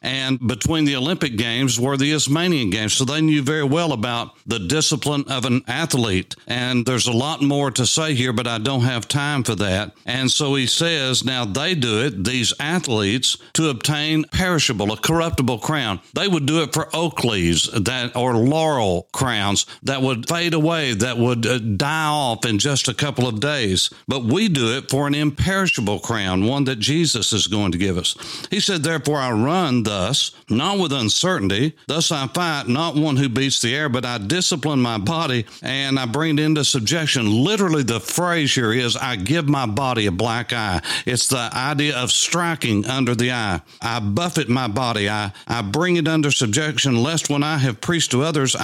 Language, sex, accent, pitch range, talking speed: English, male, American, 115-150 Hz, 195 wpm